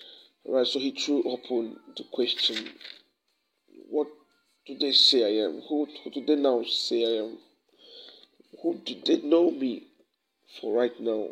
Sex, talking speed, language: male, 160 wpm, English